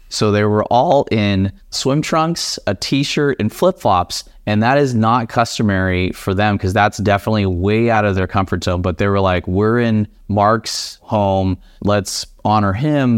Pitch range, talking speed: 100-130 Hz, 175 wpm